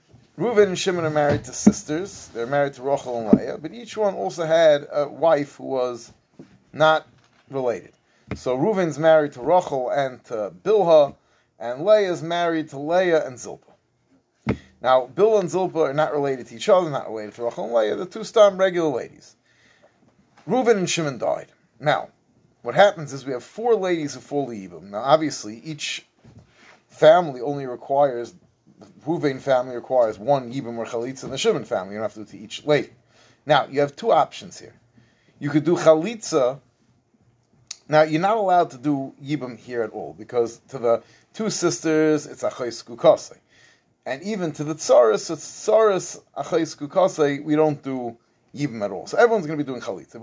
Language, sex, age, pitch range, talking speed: English, male, 30-49, 120-165 Hz, 180 wpm